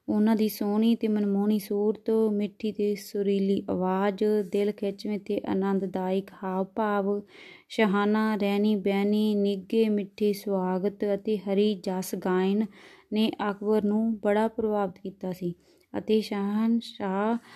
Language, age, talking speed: Punjabi, 20-39, 115 wpm